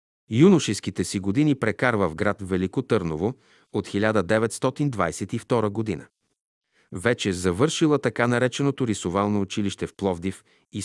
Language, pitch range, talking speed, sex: Bulgarian, 95-120 Hz, 110 wpm, male